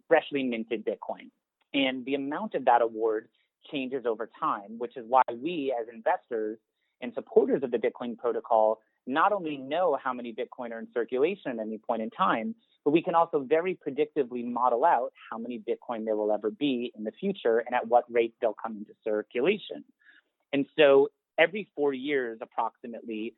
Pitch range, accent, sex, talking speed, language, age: 115-150 Hz, American, male, 180 wpm, English, 30-49